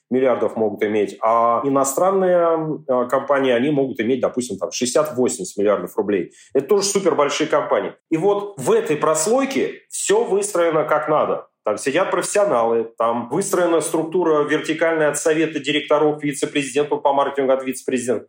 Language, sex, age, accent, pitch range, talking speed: Russian, male, 40-59, native, 125-175 Hz, 140 wpm